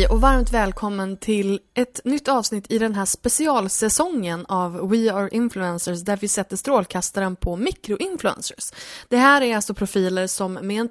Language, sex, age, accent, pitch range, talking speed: Swedish, female, 20-39, native, 190-255 Hz, 160 wpm